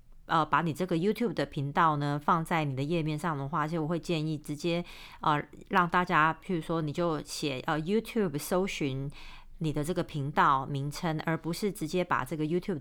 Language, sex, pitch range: Chinese, female, 150-185 Hz